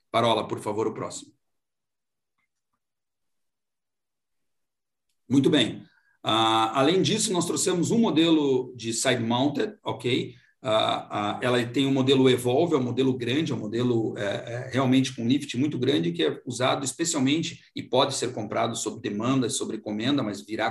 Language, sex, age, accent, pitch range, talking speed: Portuguese, male, 50-69, Brazilian, 130-170 Hz, 155 wpm